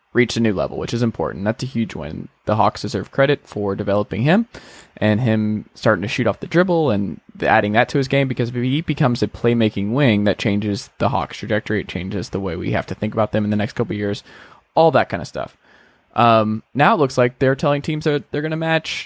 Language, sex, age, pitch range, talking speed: English, male, 20-39, 105-130 Hz, 240 wpm